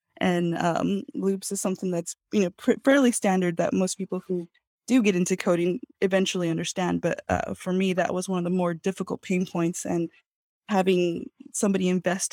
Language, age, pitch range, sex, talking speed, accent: English, 20-39, 175-200 Hz, female, 185 wpm, American